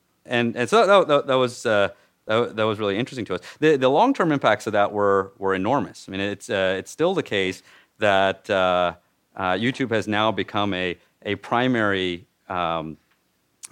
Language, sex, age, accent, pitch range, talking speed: English, male, 30-49, American, 90-110 Hz, 190 wpm